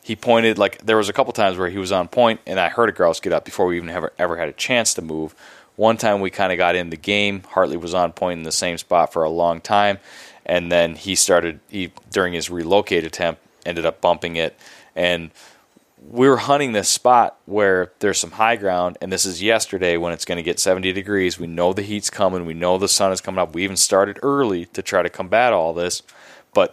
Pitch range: 90-110 Hz